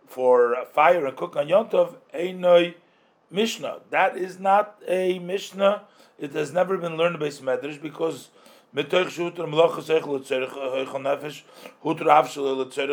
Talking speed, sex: 100 wpm, male